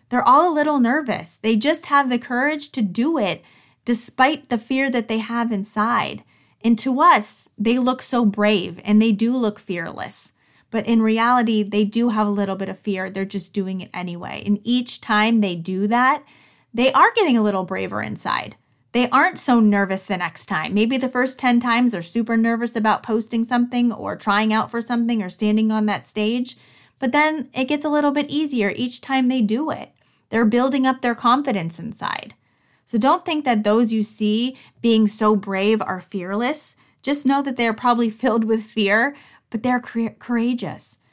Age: 30-49